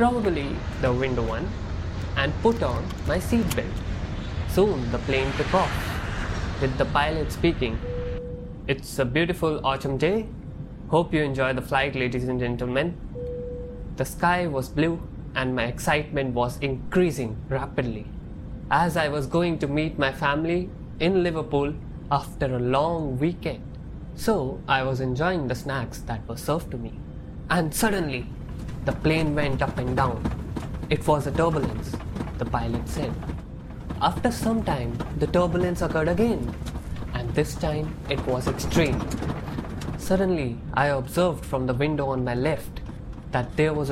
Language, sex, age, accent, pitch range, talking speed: English, male, 20-39, Indian, 125-160 Hz, 145 wpm